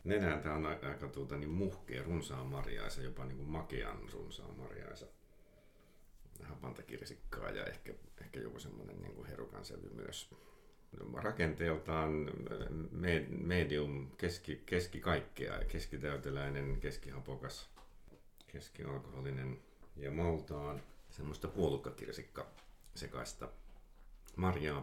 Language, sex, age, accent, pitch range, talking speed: Finnish, male, 50-69, native, 70-85 Hz, 80 wpm